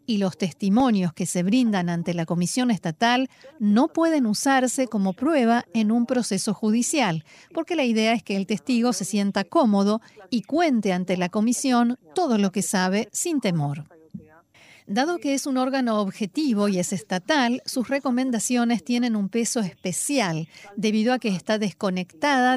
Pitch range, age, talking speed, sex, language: 195-255 Hz, 40-59, 160 wpm, female, Spanish